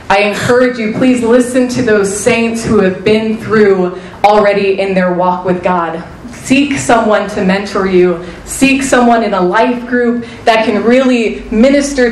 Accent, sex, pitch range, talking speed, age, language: American, female, 205-280 Hz, 165 wpm, 30-49, English